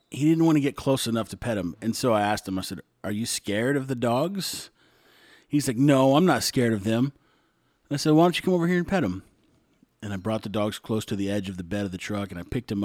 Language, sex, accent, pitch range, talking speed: English, male, American, 105-145 Hz, 290 wpm